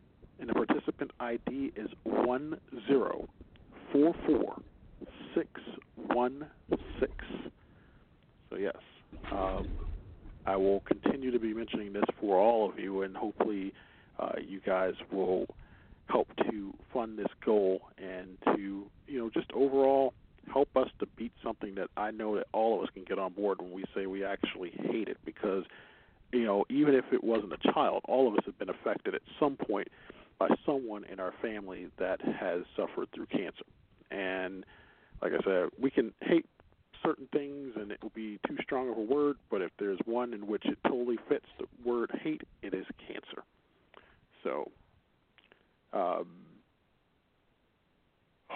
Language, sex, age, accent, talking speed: English, male, 50-69, American, 160 wpm